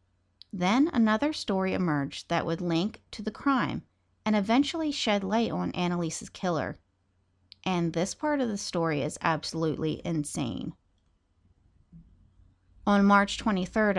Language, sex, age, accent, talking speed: English, female, 40-59, American, 125 wpm